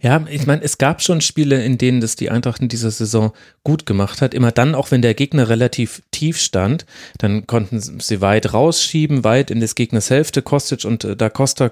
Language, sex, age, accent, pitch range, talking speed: German, male, 30-49, German, 115-145 Hz, 210 wpm